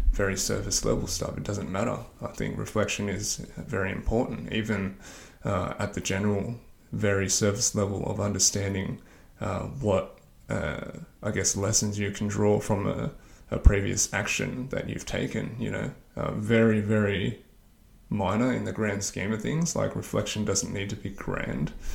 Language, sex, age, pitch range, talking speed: English, male, 20-39, 95-110 Hz, 160 wpm